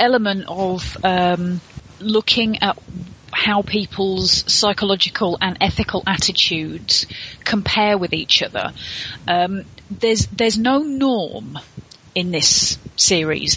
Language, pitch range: English, 185-215 Hz